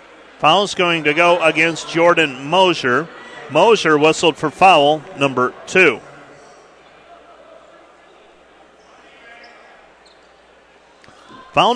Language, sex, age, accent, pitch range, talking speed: English, male, 40-59, American, 150-175 Hz, 70 wpm